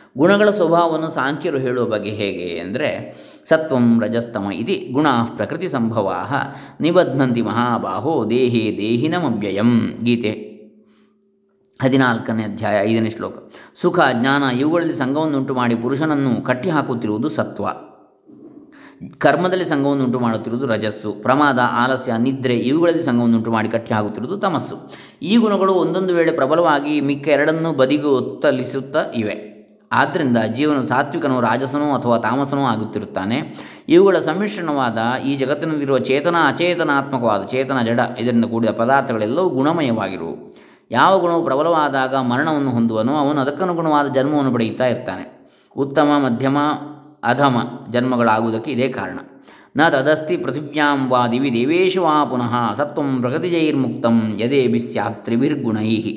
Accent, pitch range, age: native, 115-150 Hz, 20-39